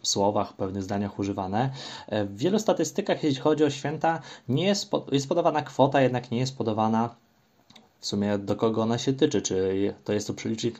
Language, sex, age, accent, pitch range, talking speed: Polish, male, 20-39, native, 105-130 Hz, 195 wpm